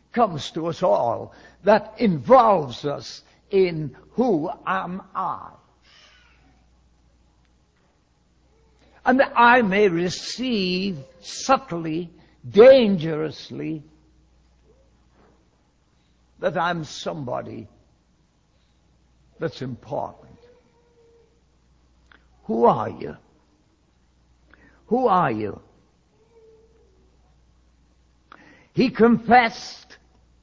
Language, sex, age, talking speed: English, male, 60-79, 60 wpm